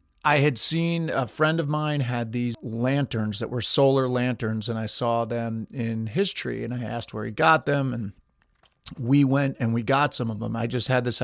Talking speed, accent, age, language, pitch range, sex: 220 wpm, American, 40-59, English, 120-145 Hz, male